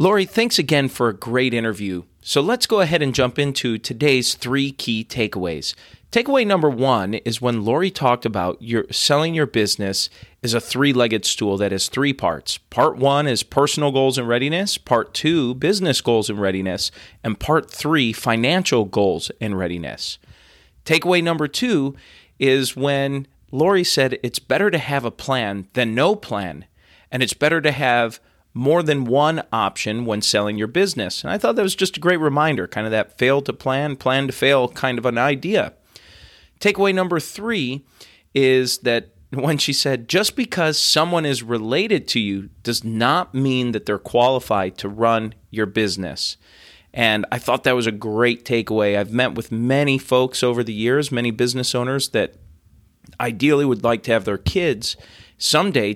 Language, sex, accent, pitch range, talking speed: English, male, American, 110-145 Hz, 175 wpm